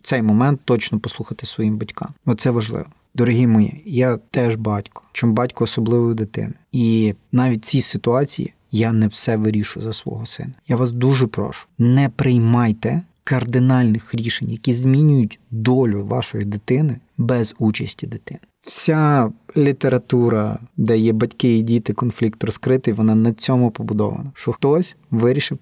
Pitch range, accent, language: 115-140 Hz, native, Ukrainian